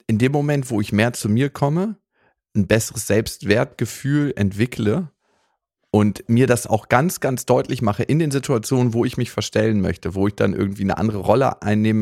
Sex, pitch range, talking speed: male, 95-120 Hz, 185 wpm